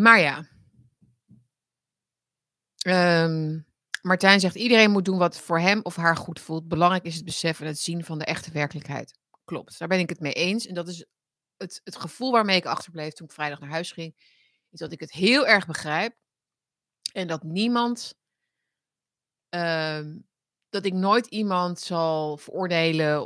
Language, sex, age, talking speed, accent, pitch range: Dutch, female, 30-49, 170 wpm, Dutch, 155-190 Hz